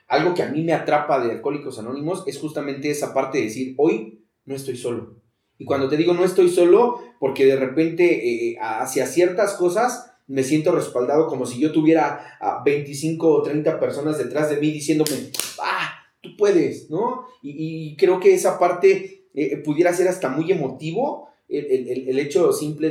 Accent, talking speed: Mexican, 185 wpm